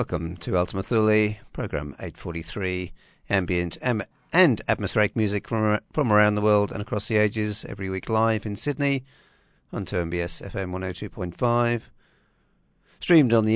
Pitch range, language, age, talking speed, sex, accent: 90-125 Hz, English, 50-69, 135 wpm, male, British